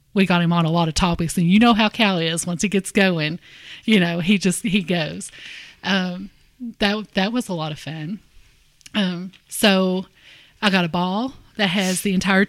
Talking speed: 200 wpm